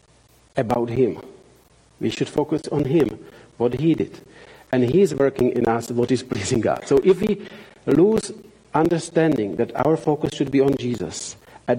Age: 50-69